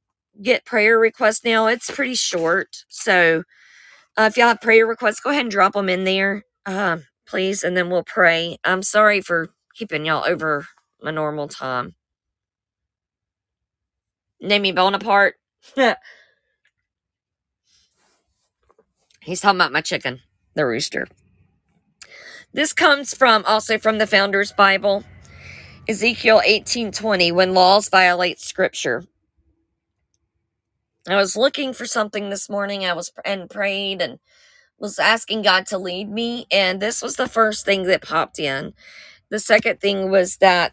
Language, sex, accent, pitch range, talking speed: English, female, American, 165-220 Hz, 135 wpm